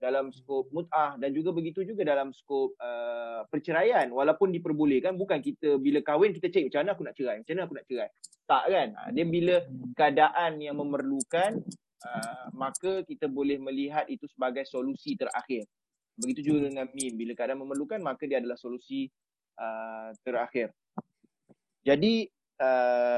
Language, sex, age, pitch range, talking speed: Malay, male, 30-49, 135-195 Hz, 155 wpm